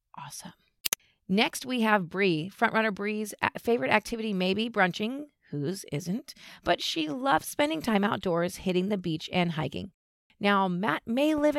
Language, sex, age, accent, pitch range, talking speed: English, female, 30-49, American, 190-255 Hz, 150 wpm